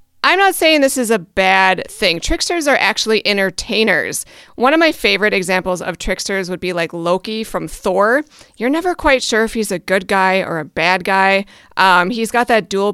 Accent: American